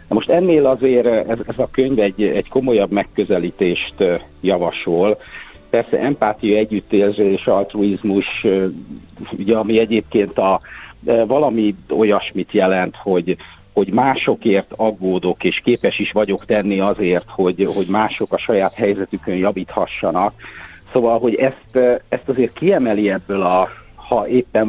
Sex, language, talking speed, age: male, Hungarian, 120 wpm, 50-69